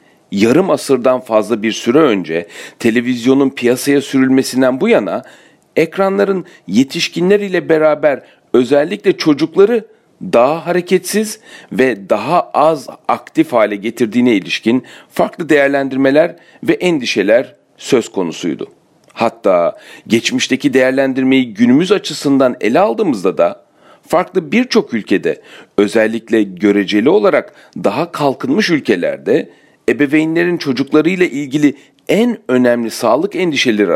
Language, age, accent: Turkish, 40-59, native